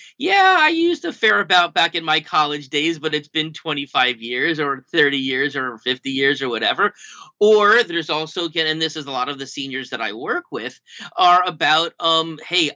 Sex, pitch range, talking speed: male, 130-160 Hz, 205 wpm